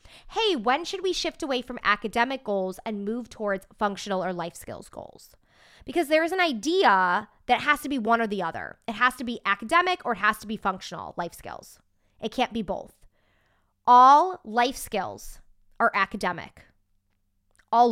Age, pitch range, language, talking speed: 20-39, 195-250 Hz, English, 180 wpm